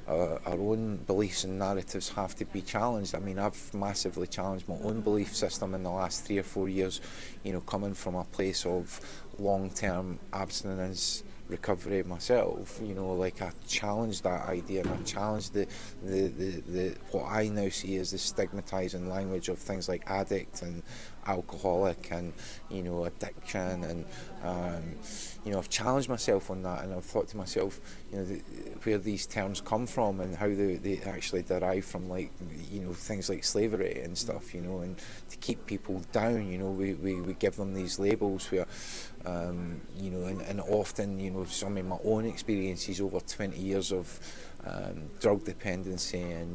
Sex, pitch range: male, 90-100 Hz